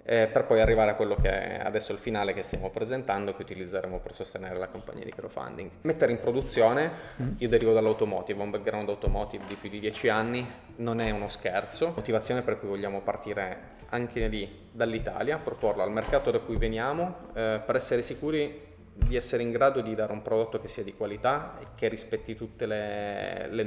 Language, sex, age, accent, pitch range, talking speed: Italian, male, 20-39, native, 105-120 Hz, 190 wpm